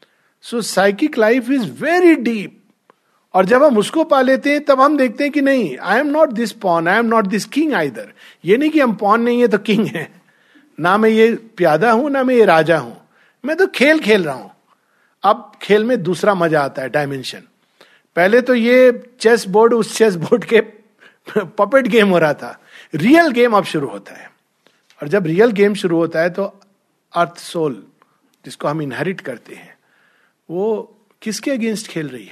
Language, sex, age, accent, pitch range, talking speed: Hindi, male, 50-69, native, 165-240 Hz, 190 wpm